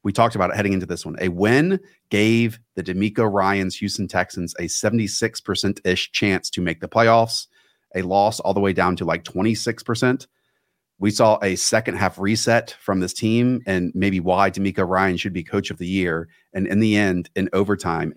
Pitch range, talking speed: 90-105 Hz, 195 wpm